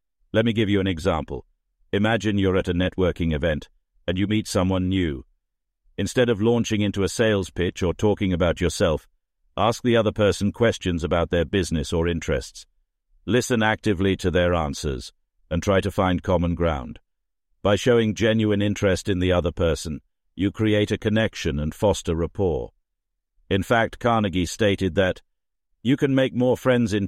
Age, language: 60-79, English